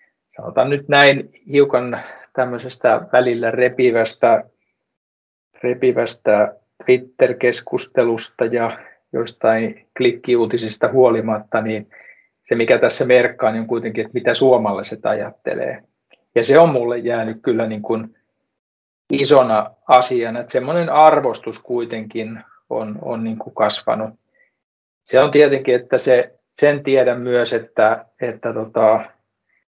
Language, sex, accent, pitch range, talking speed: Finnish, male, native, 110-125 Hz, 110 wpm